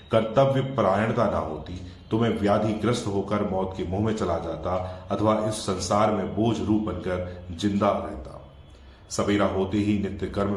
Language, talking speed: Hindi, 155 wpm